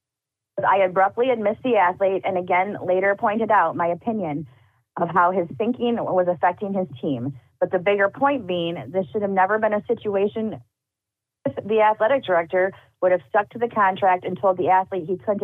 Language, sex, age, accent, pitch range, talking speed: English, female, 30-49, American, 165-205 Hz, 185 wpm